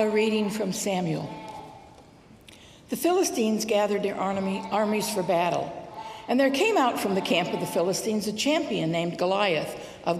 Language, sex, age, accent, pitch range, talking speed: English, female, 60-79, American, 205-275 Hz, 155 wpm